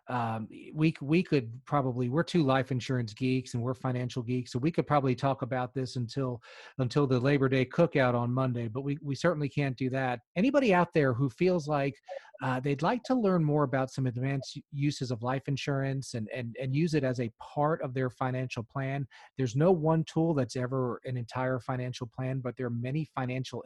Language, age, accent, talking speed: English, 40-59, American, 210 wpm